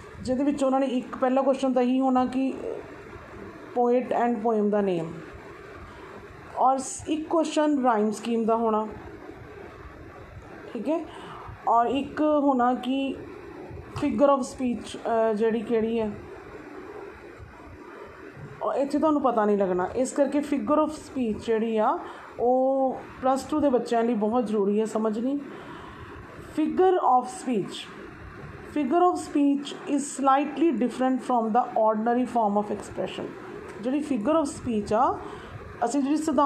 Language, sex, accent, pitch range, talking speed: English, female, Indian, 235-305 Hz, 85 wpm